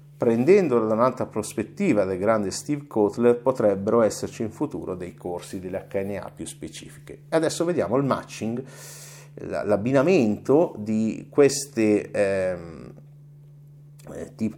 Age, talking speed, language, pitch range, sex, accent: 50-69, 110 wpm, Italian, 95-140 Hz, male, native